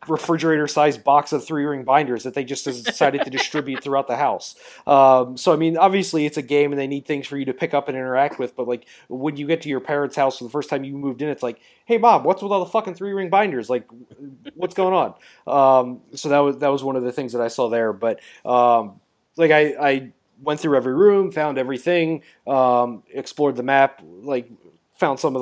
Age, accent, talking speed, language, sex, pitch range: 30-49, American, 240 wpm, English, male, 120-145 Hz